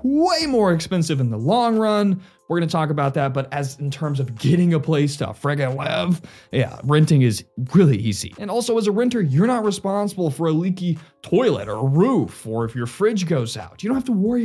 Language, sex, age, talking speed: English, male, 20-39, 230 wpm